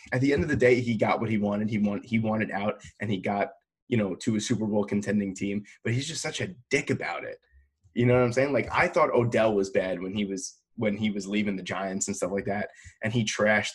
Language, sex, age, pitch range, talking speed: English, male, 20-39, 100-125 Hz, 270 wpm